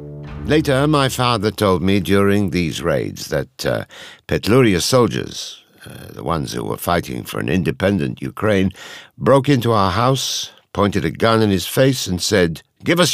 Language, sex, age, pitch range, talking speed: English, male, 60-79, 85-120 Hz, 175 wpm